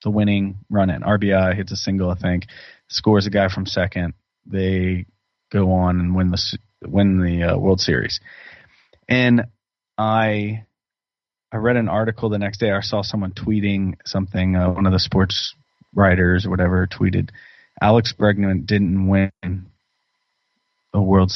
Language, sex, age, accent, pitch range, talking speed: English, male, 20-39, American, 95-110 Hz, 155 wpm